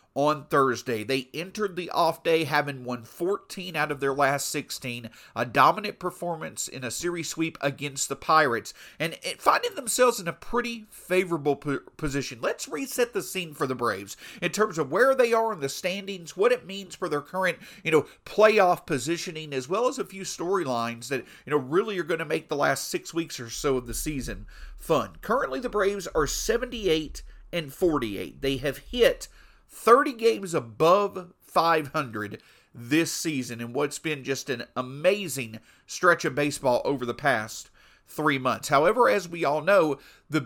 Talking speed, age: 175 wpm, 40-59